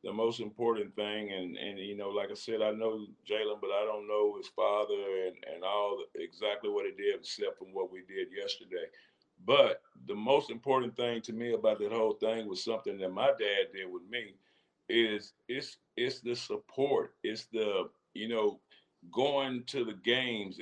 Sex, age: male, 50-69